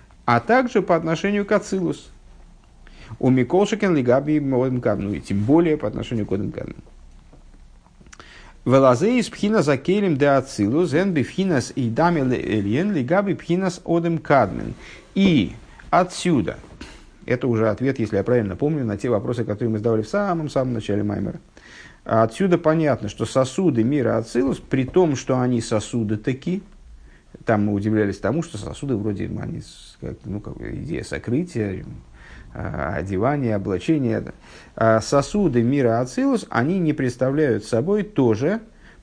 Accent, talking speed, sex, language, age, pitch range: native, 120 wpm, male, Russian, 50-69, 110-155 Hz